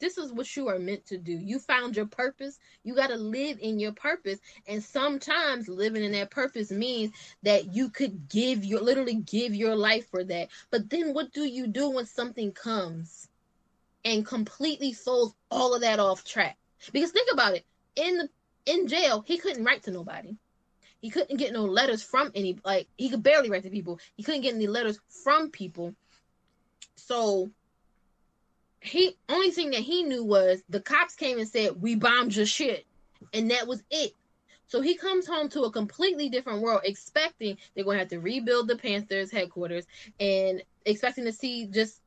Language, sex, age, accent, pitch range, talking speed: English, female, 10-29, American, 200-275 Hz, 190 wpm